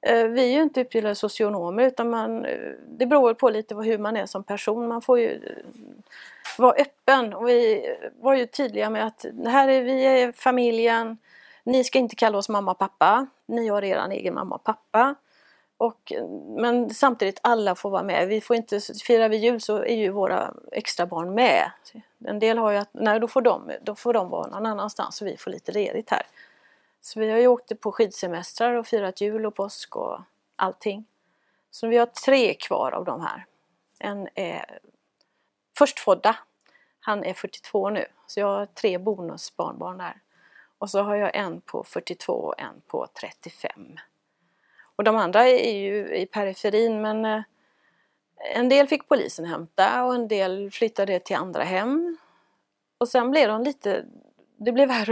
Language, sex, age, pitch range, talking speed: Swedish, female, 30-49, 205-255 Hz, 180 wpm